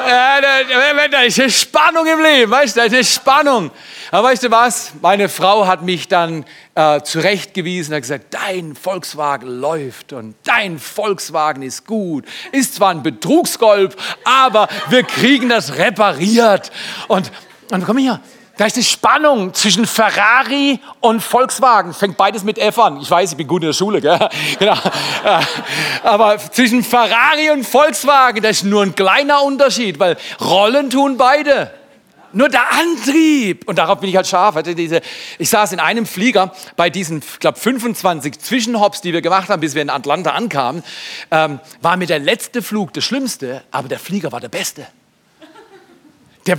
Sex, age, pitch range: male, 40-59, 180-260 Hz